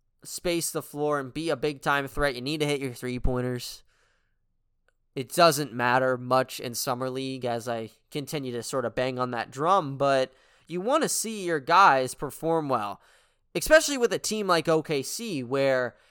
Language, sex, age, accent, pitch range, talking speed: English, male, 20-39, American, 130-180 Hz, 185 wpm